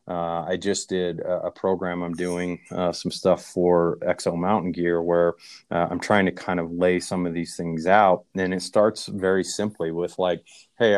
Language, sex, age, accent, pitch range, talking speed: English, male, 30-49, American, 85-95 Hz, 200 wpm